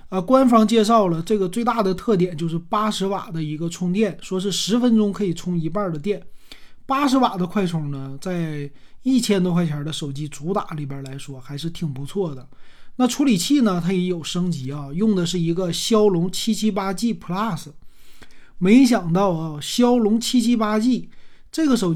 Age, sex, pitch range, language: 30-49, male, 165-220 Hz, Chinese